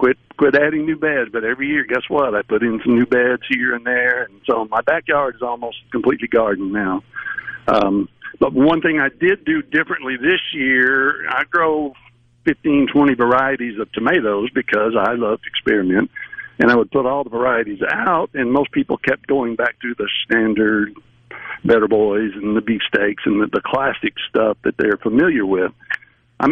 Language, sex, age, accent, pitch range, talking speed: English, male, 60-79, American, 115-170 Hz, 190 wpm